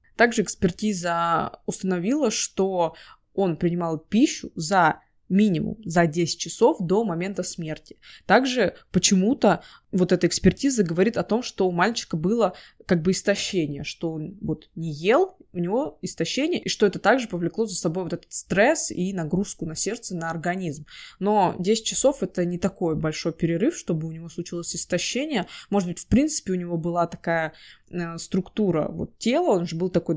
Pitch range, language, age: 170-205 Hz, Russian, 20-39